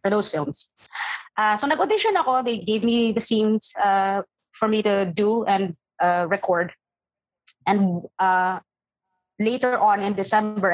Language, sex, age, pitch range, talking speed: Filipino, female, 20-39, 185-230 Hz, 145 wpm